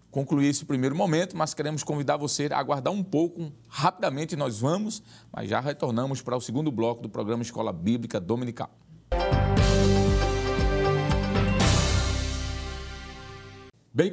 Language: Portuguese